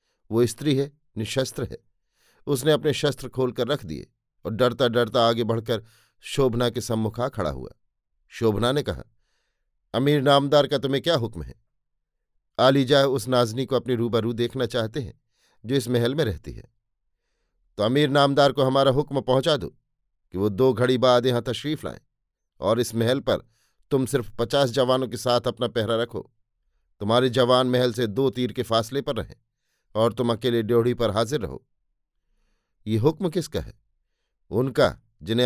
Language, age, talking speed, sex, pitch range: Hindi, 50-69, 165 wpm, male, 115-140 Hz